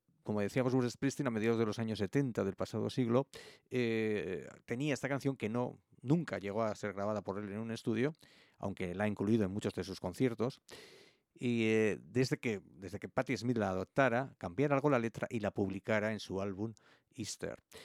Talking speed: 200 wpm